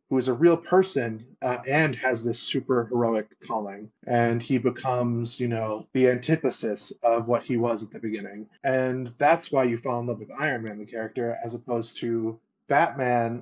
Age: 20-39